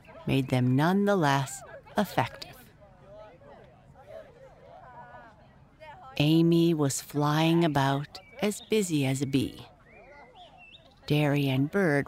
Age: 50-69